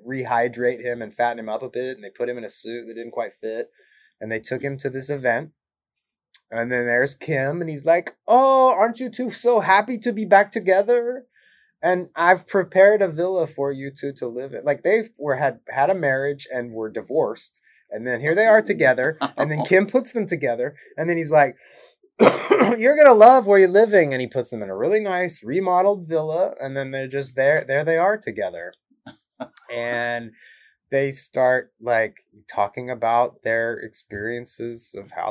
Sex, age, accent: male, 20-39, American